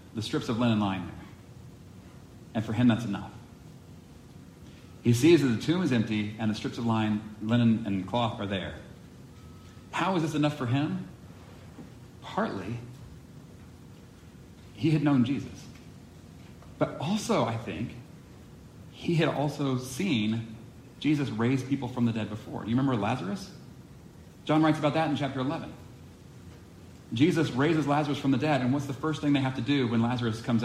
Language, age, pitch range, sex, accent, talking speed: English, 40-59, 110-140 Hz, male, American, 160 wpm